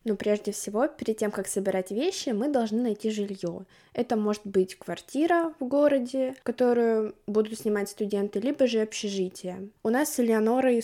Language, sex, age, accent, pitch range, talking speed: Russian, female, 20-39, native, 205-255 Hz, 160 wpm